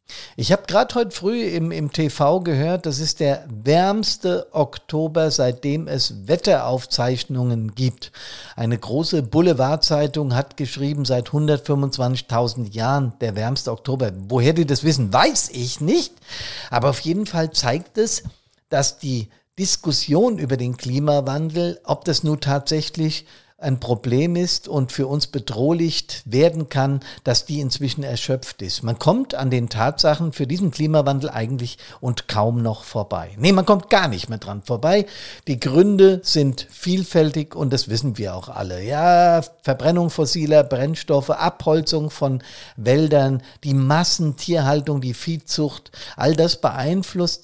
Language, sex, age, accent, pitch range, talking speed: German, male, 50-69, German, 125-160 Hz, 140 wpm